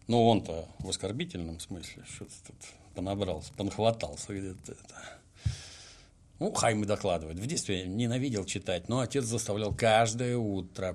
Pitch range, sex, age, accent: 95-115 Hz, male, 60-79, native